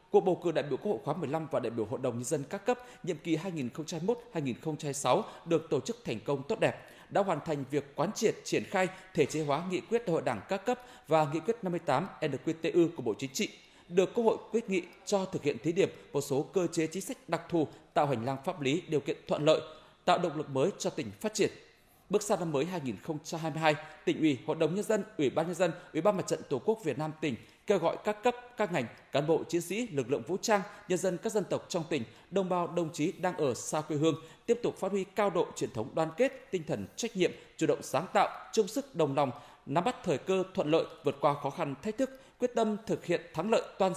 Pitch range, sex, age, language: 150-205 Hz, male, 20-39, Vietnamese